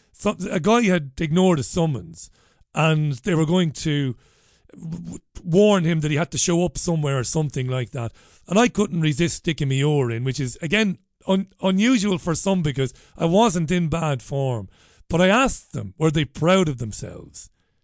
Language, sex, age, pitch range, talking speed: English, male, 40-59, 135-185 Hz, 180 wpm